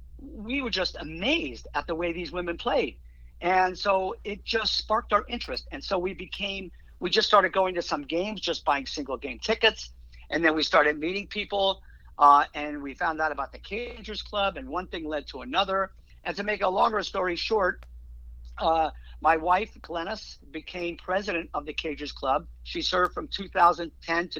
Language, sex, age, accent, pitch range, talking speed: English, male, 50-69, American, 150-195 Hz, 185 wpm